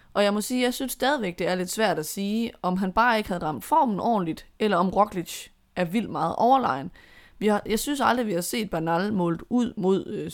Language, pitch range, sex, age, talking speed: Danish, 175-205 Hz, female, 20-39, 240 wpm